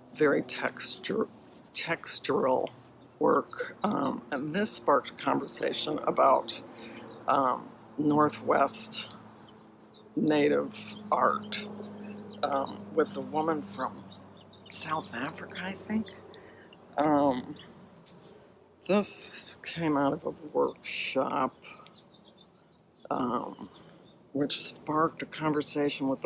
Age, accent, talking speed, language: 60-79, American, 80 wpm, English